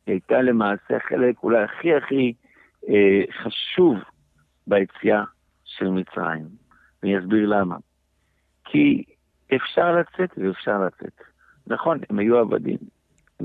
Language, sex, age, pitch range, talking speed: Hebrew, male, 60-79, 80-125 Hz, 105 wpm